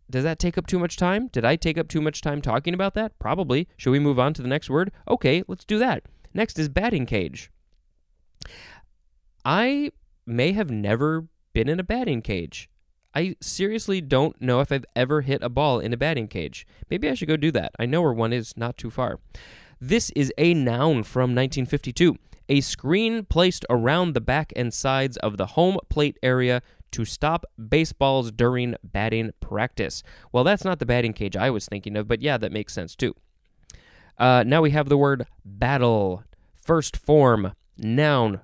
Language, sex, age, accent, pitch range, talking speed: English, male, 20-39, American, 110-155 Hz, 190 wpm